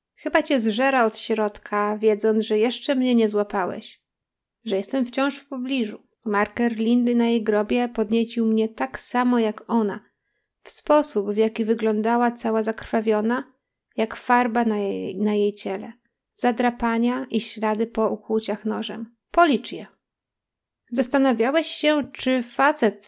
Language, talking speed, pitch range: Polish, 135 wpm, 215-260 Hz